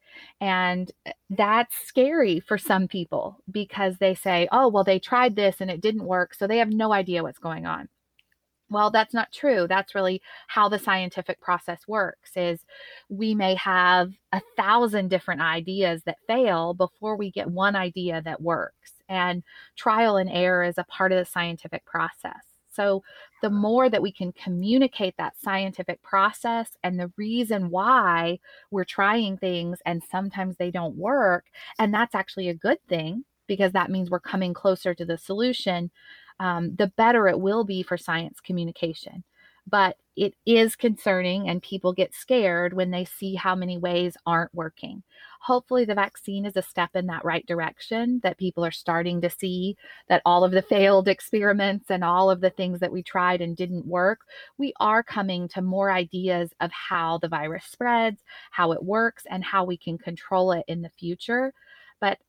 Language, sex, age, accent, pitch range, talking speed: English, female, 30-49, American, 180-215 Hz, 175 wpm